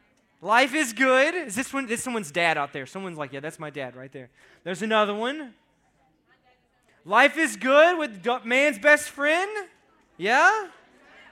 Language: English